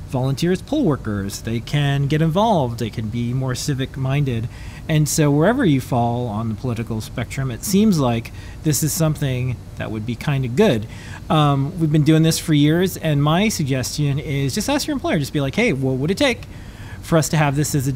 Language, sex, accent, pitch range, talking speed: English, male, American, 125-175 Hz, 205 wpm